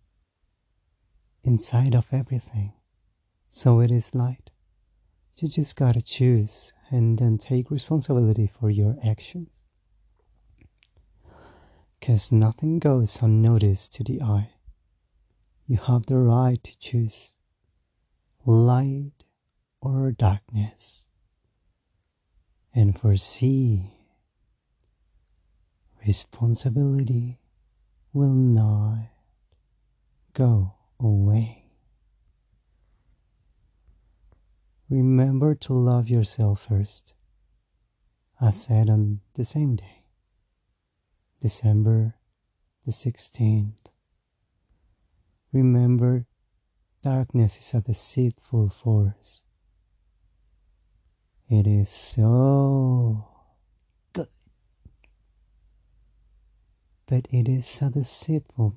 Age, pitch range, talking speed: 40-59, 95-125 Hz, 70 wpm